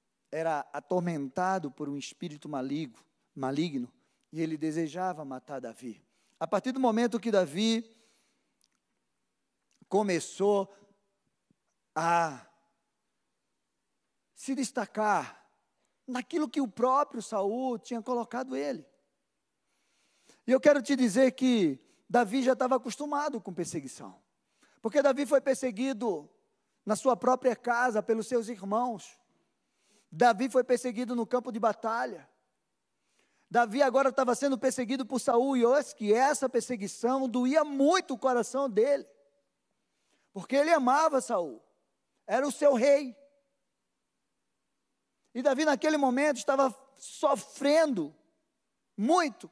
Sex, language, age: male, Portuguese, 40-59